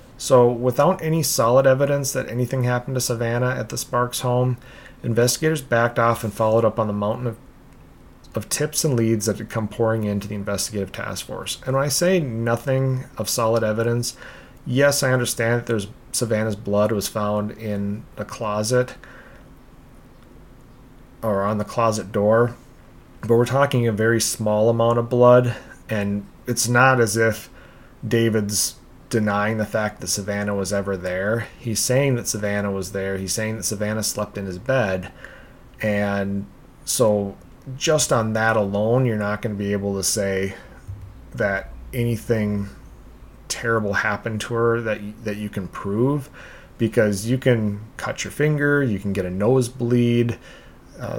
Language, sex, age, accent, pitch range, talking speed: English, male, 30-49, American, 105-125 Hz, 160 wpm